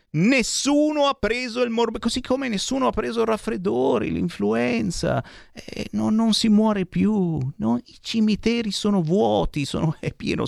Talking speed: 155 wpm